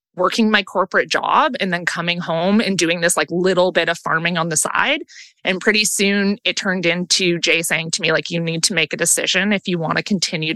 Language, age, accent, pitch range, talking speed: English, 20-39, American, 175-215 Hz, 235 wpm